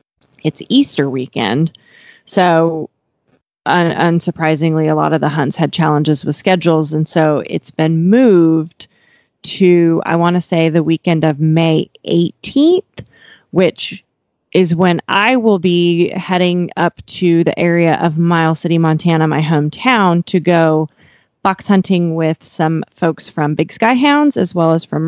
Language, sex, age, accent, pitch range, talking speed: English, female, 30-49, American, 155-185 Hz, 145 wpm